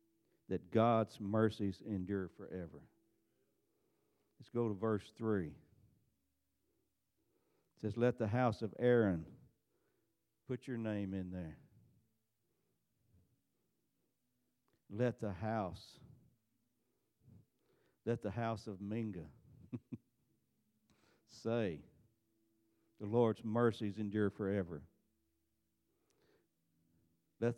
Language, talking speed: English, 80 wpm